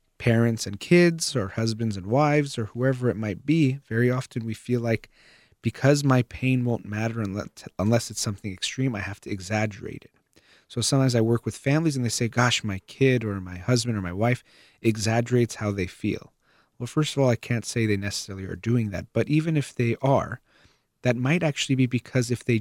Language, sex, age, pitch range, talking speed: English, male, 30-49, 105-130 Hz, 205 wpm